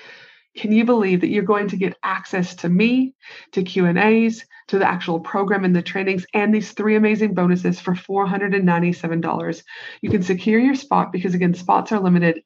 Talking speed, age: 180 wpm, 30-49